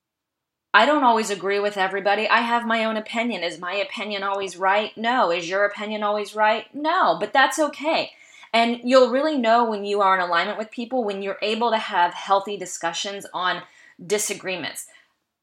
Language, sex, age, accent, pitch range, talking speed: English, female, 20-39, American, 185-235 Hz, 180 wpm